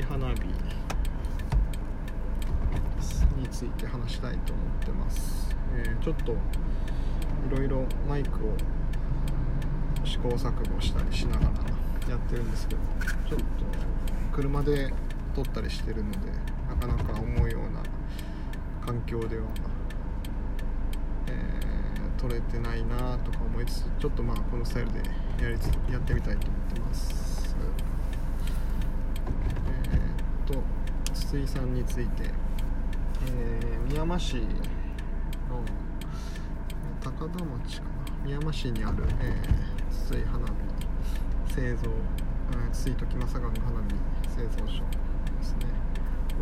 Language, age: Japanese, 20-39